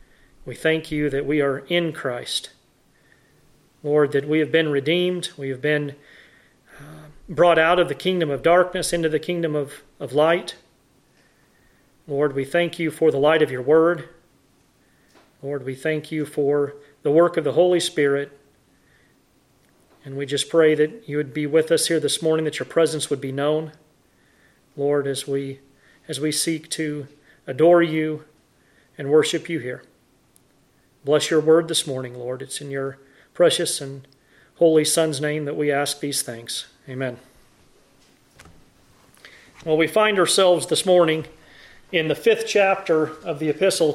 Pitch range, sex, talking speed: 140-165 Hz, male, 160 wpm